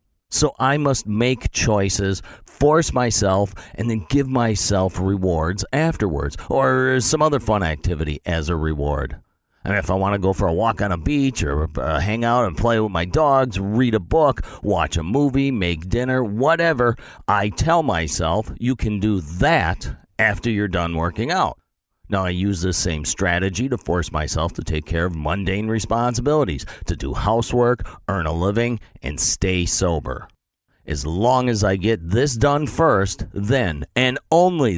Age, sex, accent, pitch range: 40-59, male, American, 85-115 Hz